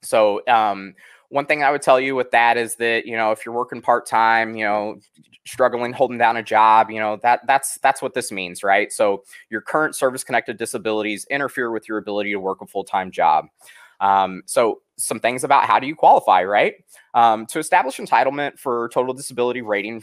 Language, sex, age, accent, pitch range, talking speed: English, male, 20-39, American, 110-140 Hz, 200 wpm